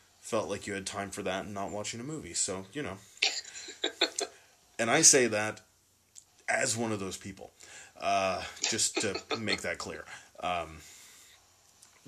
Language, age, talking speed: English, 20-39, 155 wpm